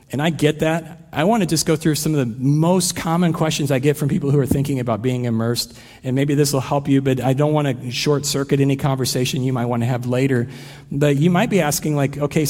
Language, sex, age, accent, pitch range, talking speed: English, male, 40-59, American, 135-170 Hz, 255 wpm